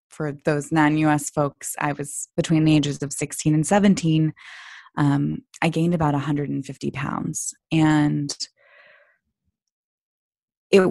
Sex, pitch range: female, 150-170 Hz